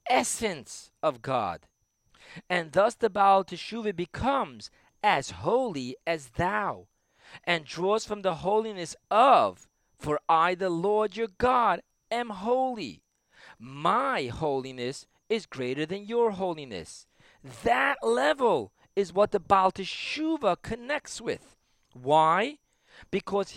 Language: English